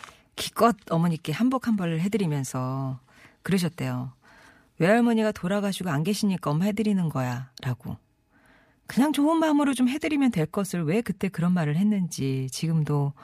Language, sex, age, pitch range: Korean, female, 40-59, 145-205 Hz